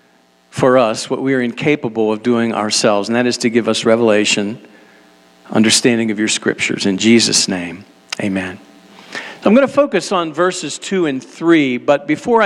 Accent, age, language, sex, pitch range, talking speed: American, 50-69, English, male, 130-190 Hz, 170 wpm